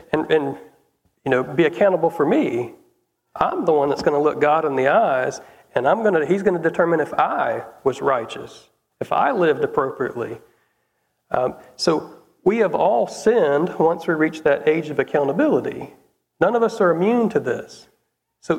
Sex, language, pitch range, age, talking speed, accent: male, English, 160-220 Hz, 40-59, 180 wpm, American